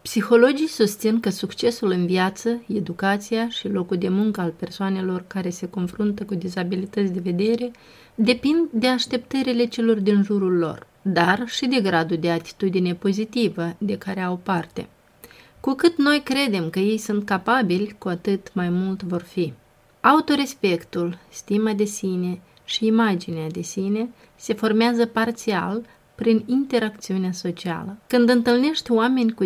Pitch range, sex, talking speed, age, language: 185-230 Hz, female, 145 wpm, 30-49, Romanian